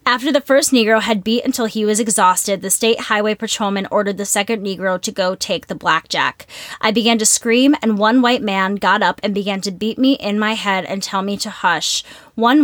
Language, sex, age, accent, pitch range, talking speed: English, female, 20-39, American, 195-235 Hz, 225 wpm